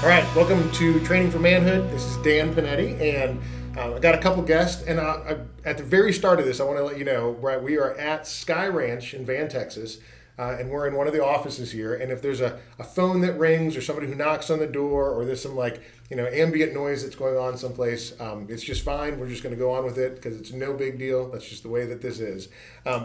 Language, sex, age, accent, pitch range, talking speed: English, male, 40-59, American, 125-150 Hz, 260 wpm